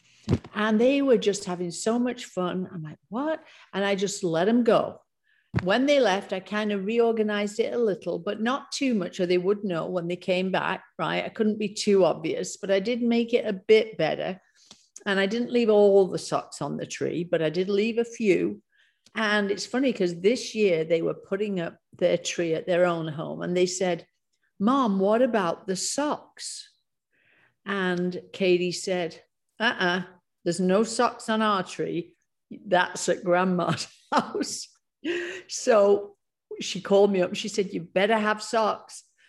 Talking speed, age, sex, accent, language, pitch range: 185 wpm, 50-69, female, British, English, 180-220 Hz